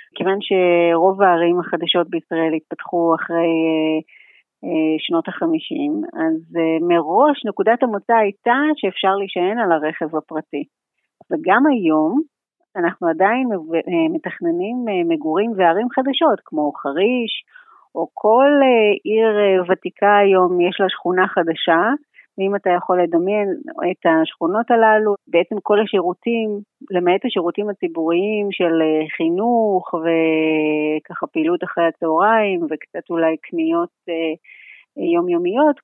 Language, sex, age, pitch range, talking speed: Hebrew, female, 30-49, 170-230 Hz, 115 wpm